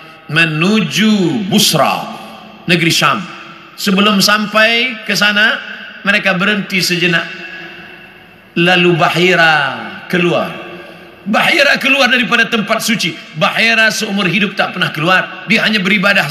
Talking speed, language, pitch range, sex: 105 wpm, Indonesian, 155-210 Hz, male